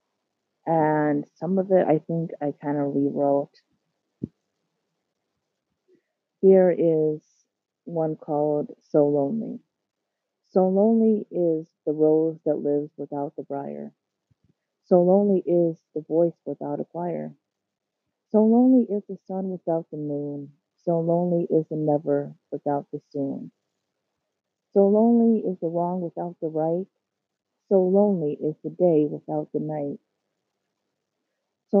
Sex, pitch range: female, 150-190 Hz